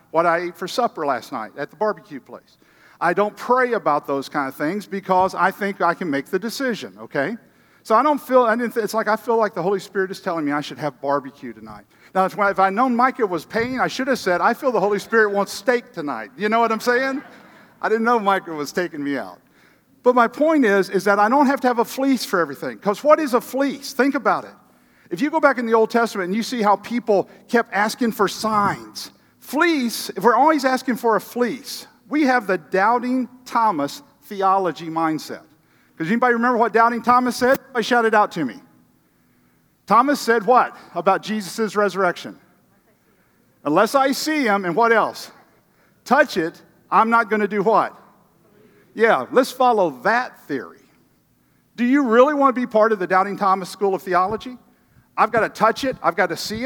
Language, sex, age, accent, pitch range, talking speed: English, male, 50-69, American, 190-250 Hz, 210 wpm